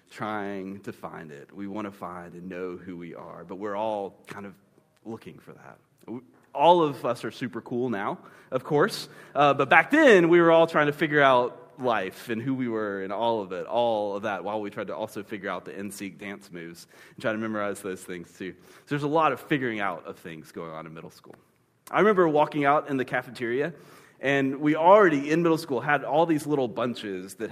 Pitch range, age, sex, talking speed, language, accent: 100-140 Hz, 30-49, male, 225 wpm, English, American